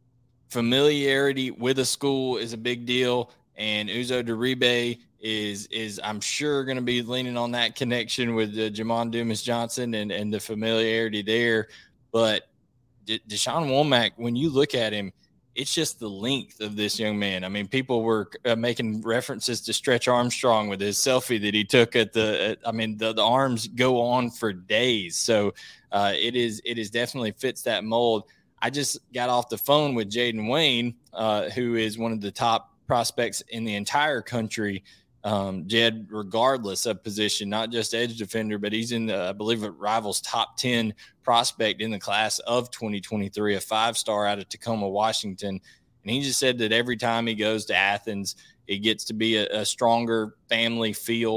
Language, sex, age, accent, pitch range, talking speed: English, male, 20-39, American, 105-120 Hz, 185 wpm